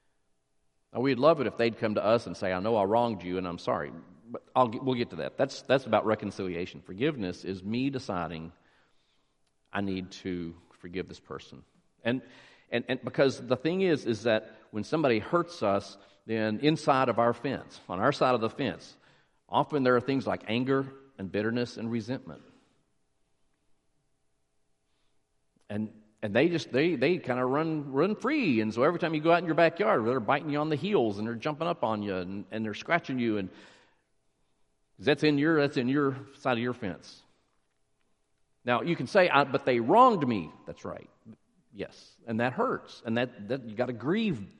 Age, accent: 50-69, American